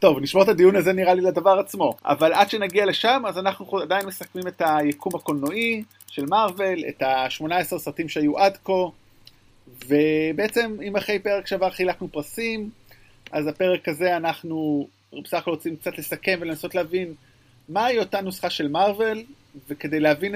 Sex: male